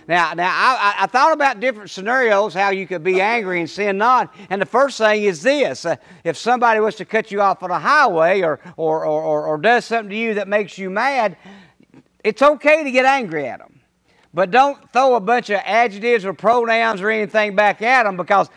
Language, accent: English, American